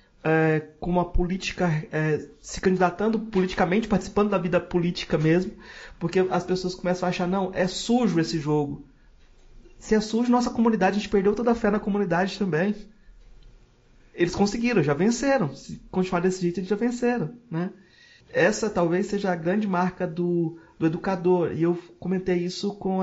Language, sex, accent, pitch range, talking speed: Portuguese, male, Brazilian, 160-195 Hz, 165 wpm